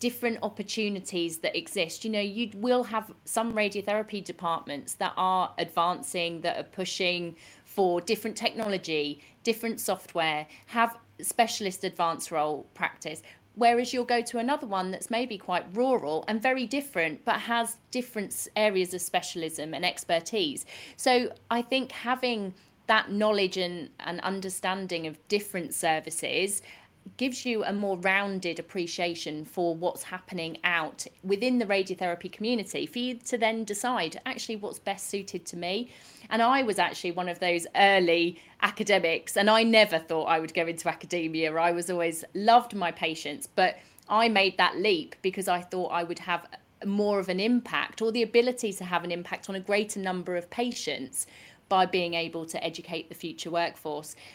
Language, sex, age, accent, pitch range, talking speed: English, female, 30-49, British, 170-225 Hz, 160 wpm